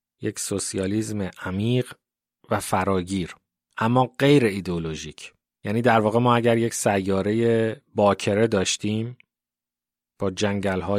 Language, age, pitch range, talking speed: Persian, 30-49, 95-110 Hz, 105 wpm